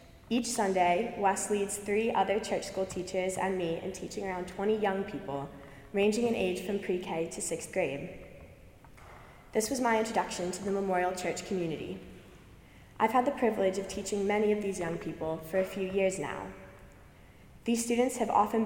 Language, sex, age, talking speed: English, female, 20-39, 175 wpm